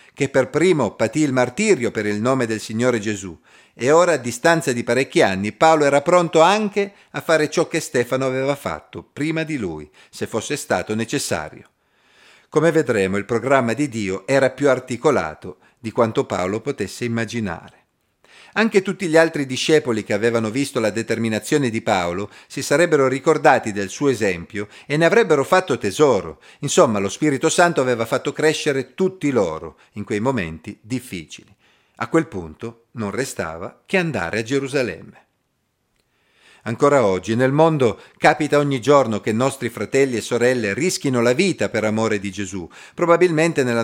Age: 50-69